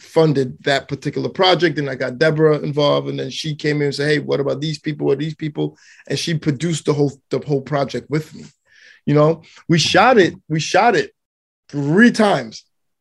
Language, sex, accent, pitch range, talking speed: English, male, American, 140-165 Hz, 205 wpm